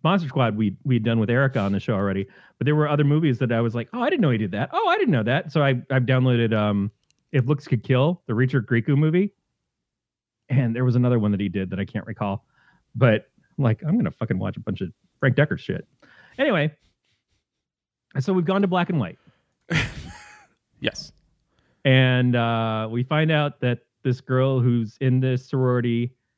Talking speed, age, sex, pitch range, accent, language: 205 wpm, 30-49, male, 115-140 Hz, American, English